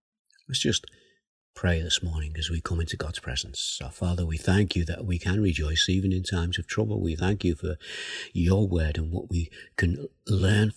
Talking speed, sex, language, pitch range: 200 wpm, male, English, 85-100 Hz